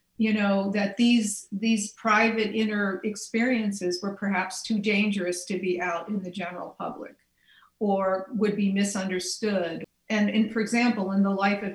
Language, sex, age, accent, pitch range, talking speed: English, female, 50-69, American, 185-215 Hz, 155 wpm